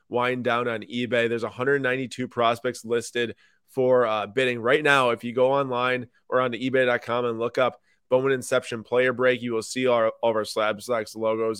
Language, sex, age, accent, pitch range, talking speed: English, male, 20-39, American, 115-130 Hz, 190 wpm